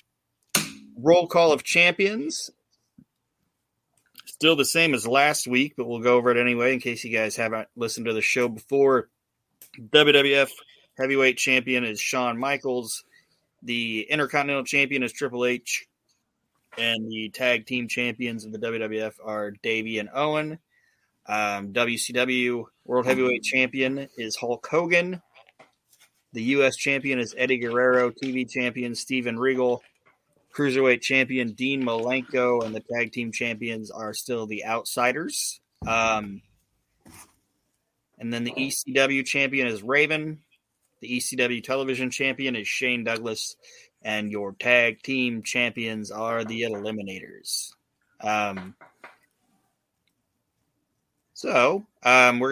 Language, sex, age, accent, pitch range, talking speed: English, male, 30-49, American, 115-135 Hz, 125 wpm